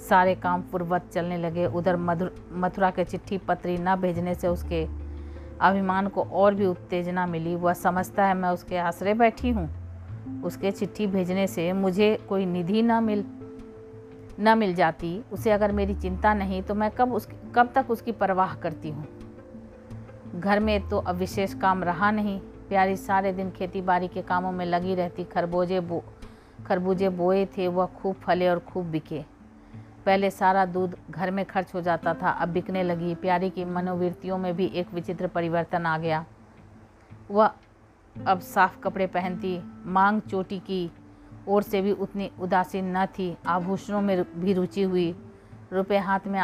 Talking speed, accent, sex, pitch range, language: 165 wpm, native, female, 170-195 Hz, Hindi